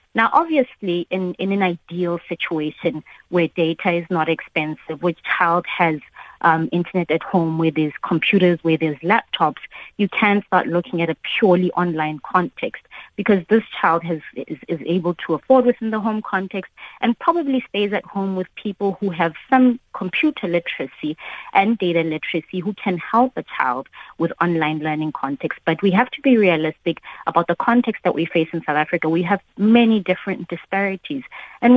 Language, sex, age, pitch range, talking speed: English, female, 20-39, 165-205 Hz, 175 wpm